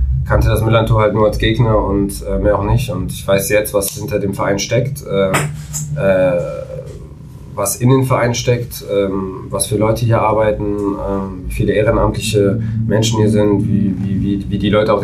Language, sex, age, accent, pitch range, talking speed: German, male, 20-39, German, 95-110 Hz, 190 wpm